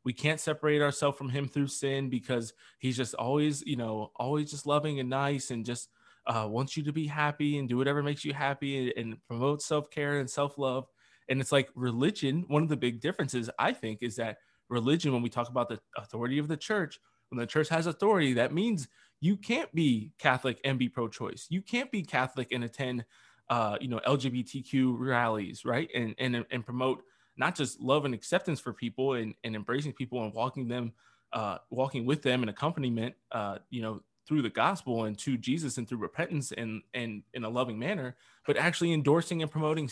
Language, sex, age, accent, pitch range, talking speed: English, male, 20-39, American, 120-145 Hz, 205 wpm